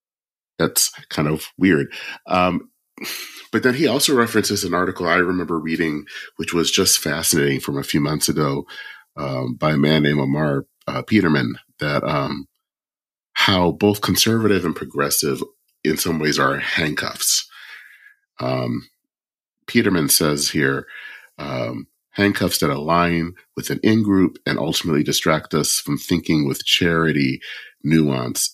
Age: 40-59